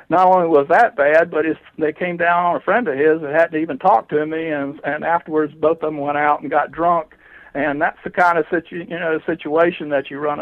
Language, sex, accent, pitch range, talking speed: English, male, American, 140-160 Hz, 260 wpm